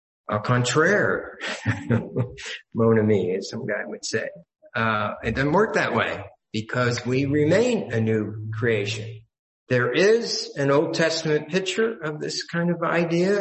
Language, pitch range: English, 120-155 Hz